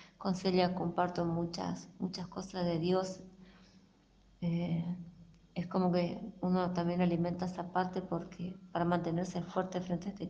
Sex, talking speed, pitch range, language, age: female, 140 wpm, 175-190 Hz, Spanish, 20-39